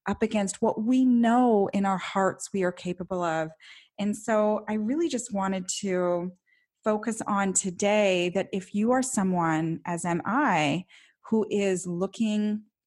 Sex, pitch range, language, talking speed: female, 180-215 Hz, English, 155 wpm